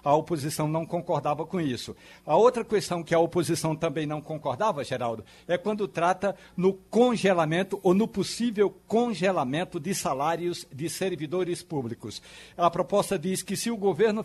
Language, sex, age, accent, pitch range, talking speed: Portuguese, male, 60-79, Brazilian, 155-195 Hz, 155 wpm